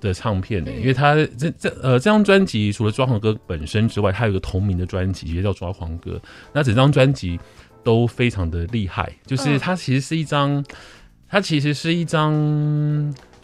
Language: Chinese